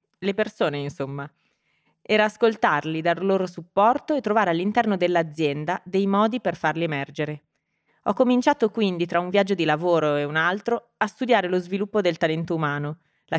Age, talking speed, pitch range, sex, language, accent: 30-49, 160 wpm, 155-205 Hz, female, Italian, native